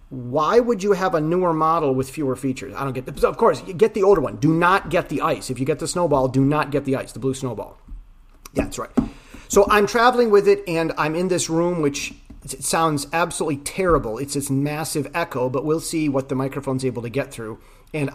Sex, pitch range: male, 130-170 Hz